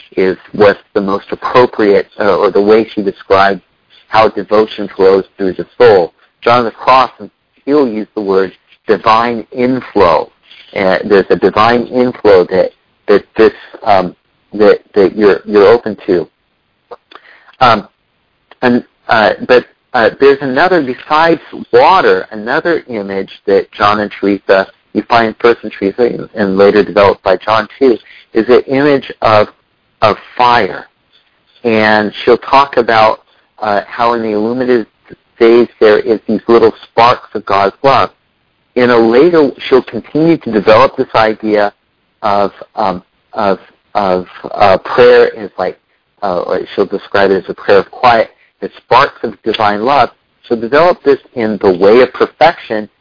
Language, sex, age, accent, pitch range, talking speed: English, male, 50-69, American, 105-140 Hz, 150 wpm